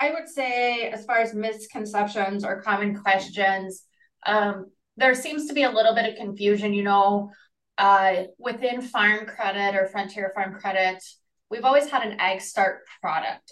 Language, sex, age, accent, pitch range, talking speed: English, female, 20-39, American, 185-215 Hz, 165 wpm